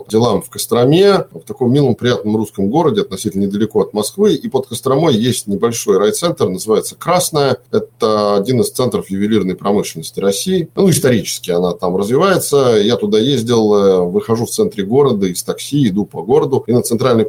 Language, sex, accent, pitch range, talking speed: Russian, male, native, 100-140 Hz, 165 wpm